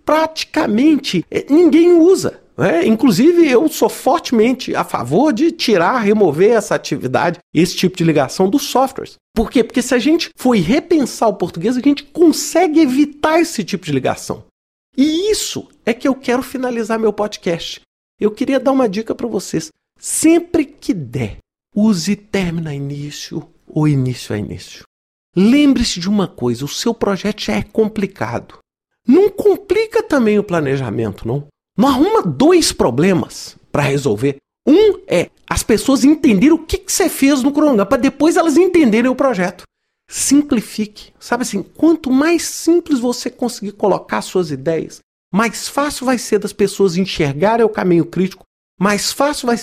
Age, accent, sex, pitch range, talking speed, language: 50-69, Brazilian, male, 185-300 Hz, 155 wpm, Portuguese